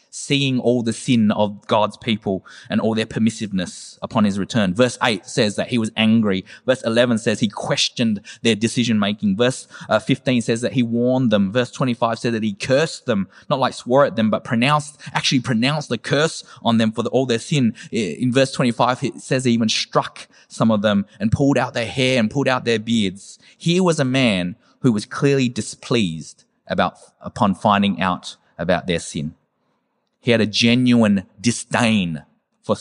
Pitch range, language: 105-125 Hz, English